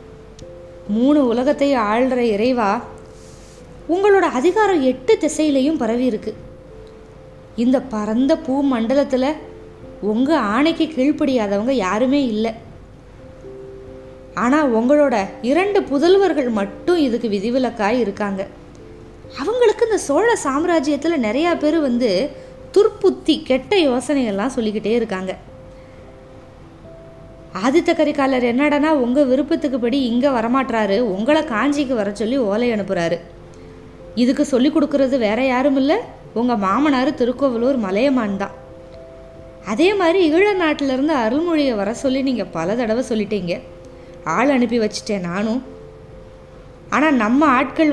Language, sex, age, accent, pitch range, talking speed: Tamil, female, 20-39, native, 215-295 Hz, 100 wpm